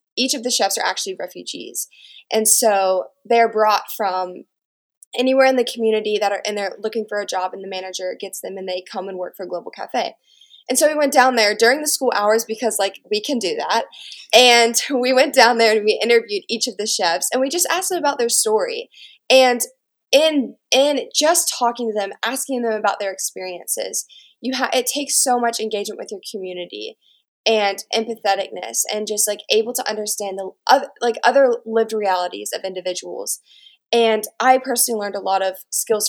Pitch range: 200-255 Hz